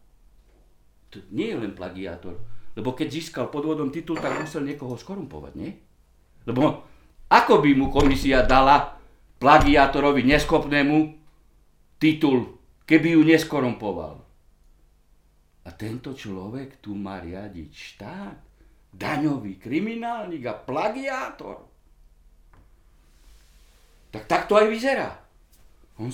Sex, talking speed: male, 100 wpm